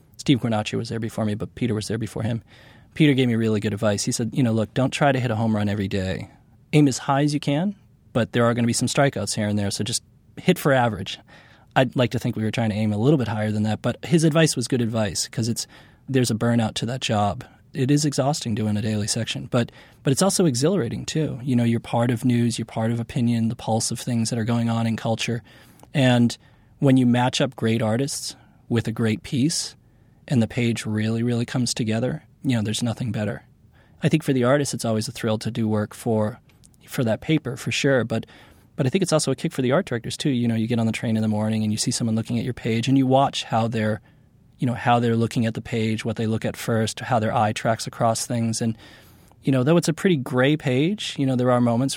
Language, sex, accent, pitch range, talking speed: English, male, American, 110-135 Hz, 260 wpm